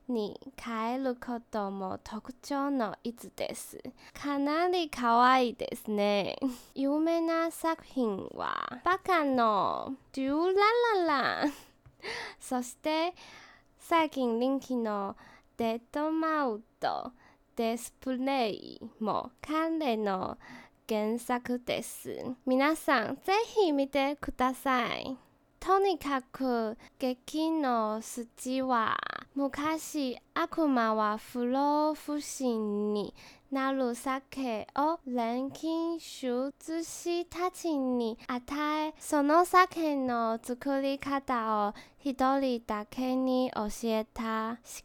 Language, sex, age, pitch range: Japanese, female, 10-29, 235-300 Hz